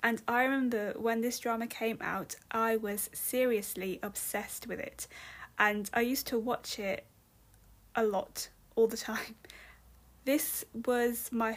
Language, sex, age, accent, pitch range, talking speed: English, female, 20-39, British, 210-245 Hz, 145 wpm